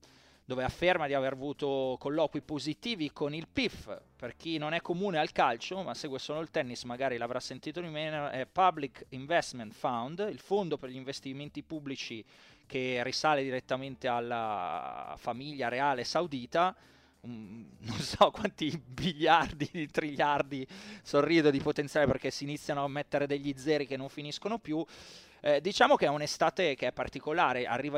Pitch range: 130-150 Hz